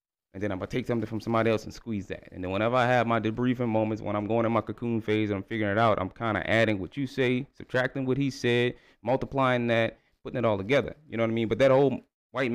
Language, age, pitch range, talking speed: English, 20-39, 100-135 Hz, 280 wpm